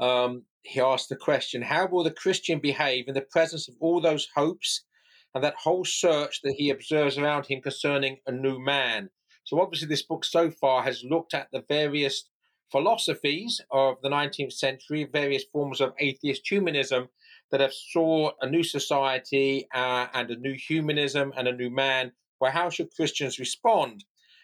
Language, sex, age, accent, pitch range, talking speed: English, male, 40-59, British, 135-170 Hz, 175 wpm